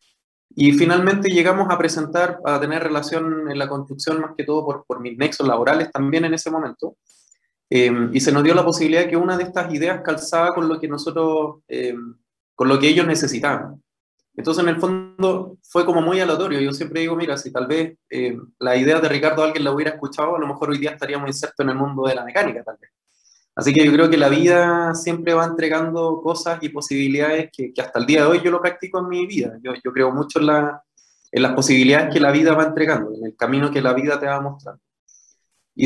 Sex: male